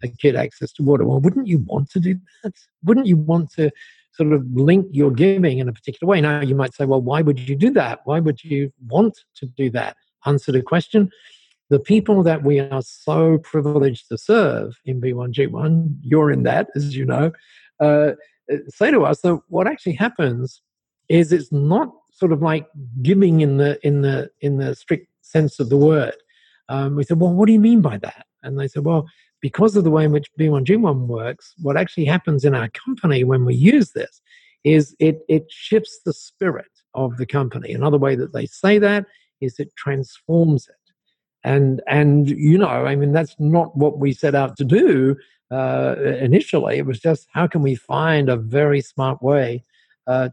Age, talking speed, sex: 50-69, 200 wpm, male